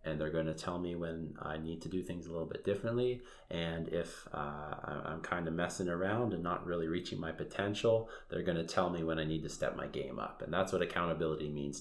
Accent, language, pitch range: American, English, 80-95 Hz